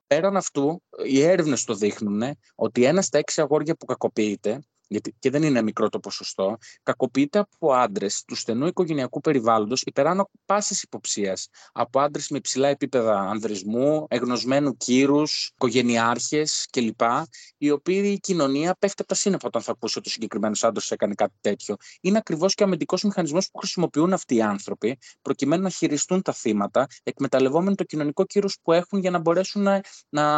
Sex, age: male, 20-39